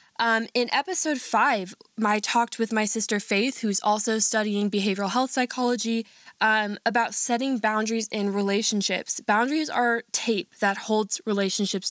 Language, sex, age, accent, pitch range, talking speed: English, female, 10-29, American, 200-240 Hz, 140 wpm